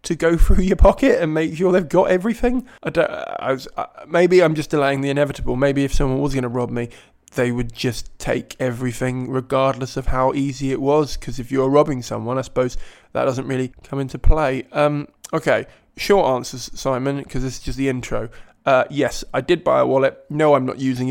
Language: English